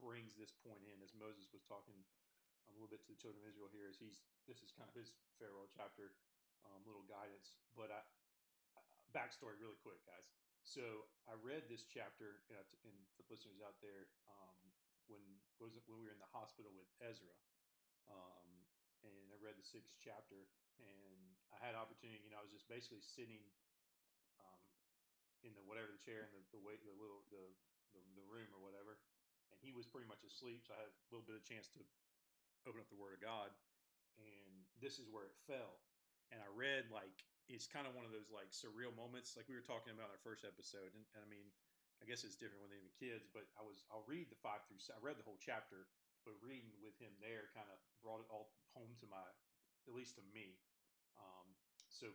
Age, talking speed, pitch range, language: 40-59, 220 wpm, 100-115 Hz, English